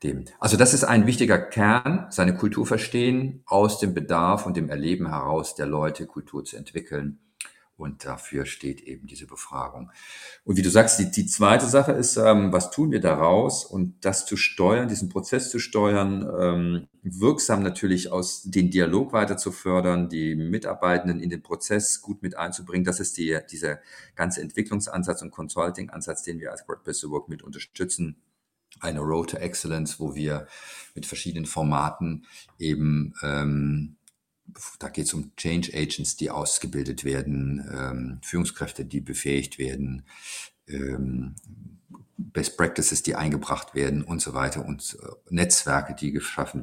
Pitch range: 75-95 Hz